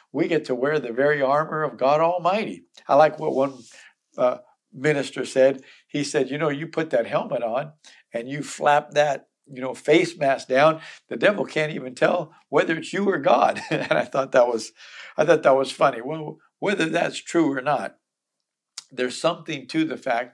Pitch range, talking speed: 130-150 Hz, 195 wpm